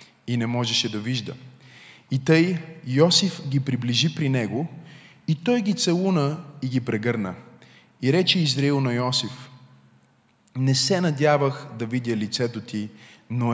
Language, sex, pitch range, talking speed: Bulgarian, male, 115-150 Hz, 140 wpm